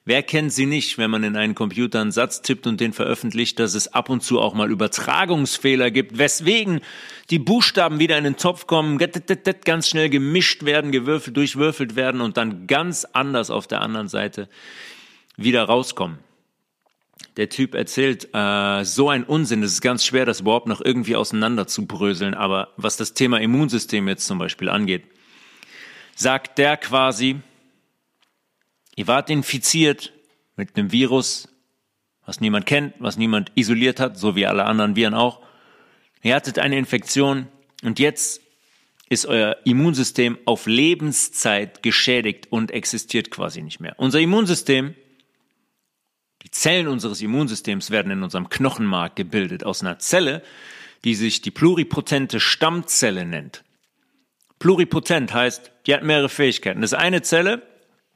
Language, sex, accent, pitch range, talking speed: German, male, German, 110-150 Hz, 150 wpm